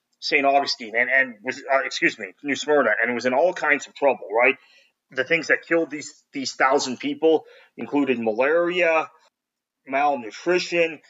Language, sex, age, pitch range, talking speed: English, male, 30-49, 115-145 Hz, 160 wpm